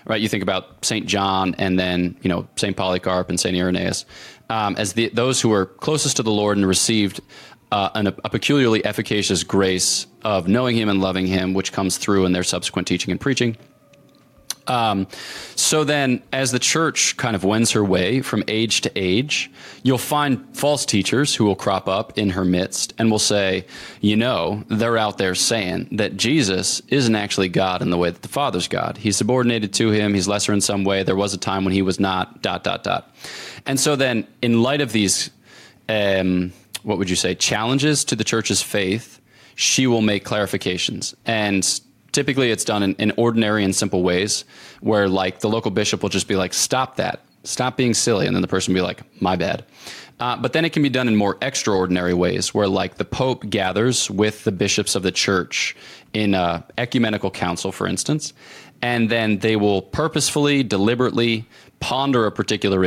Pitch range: 95-120 Hz